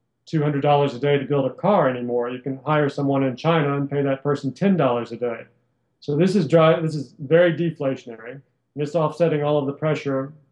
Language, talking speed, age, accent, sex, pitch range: English, 205 wpm, 40-59, American, male, 130-155 Hz